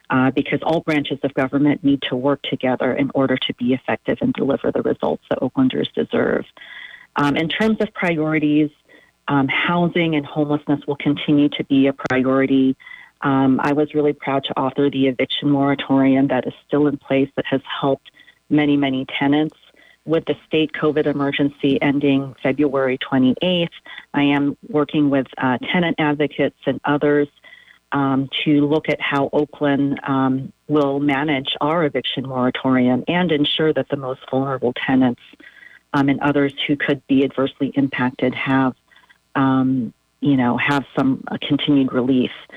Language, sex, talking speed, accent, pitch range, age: English, female, 155 wpm, American, 135-150 Hz, 40-59